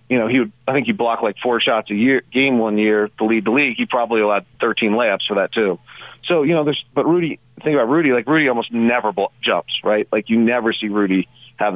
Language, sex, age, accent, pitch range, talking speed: English, male, 40-59, American, 115-135 Hz, 255 wpm